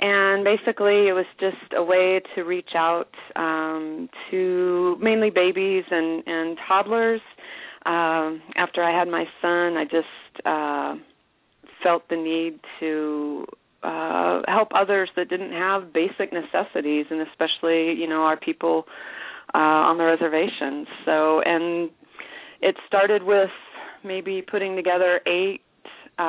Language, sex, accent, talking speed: English, female, American, 130 wpm